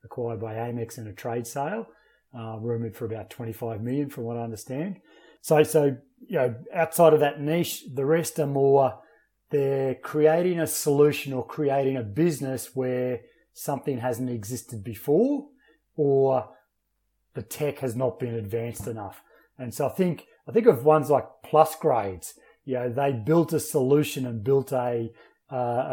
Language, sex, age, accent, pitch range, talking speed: English, male, 30-49, Australian, 120-155 Hz, 165 wpm